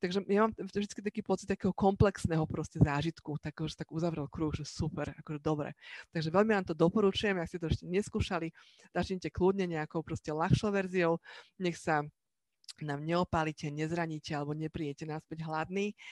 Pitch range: 145-175 Hz